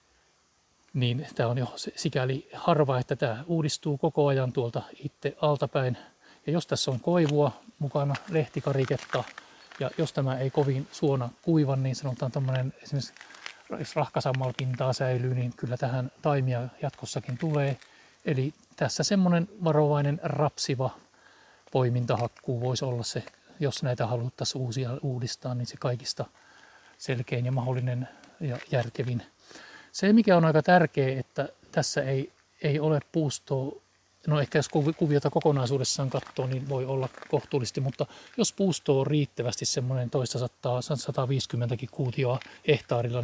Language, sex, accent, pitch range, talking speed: Finnish, male, native, 125-150 Hz, 130 wpm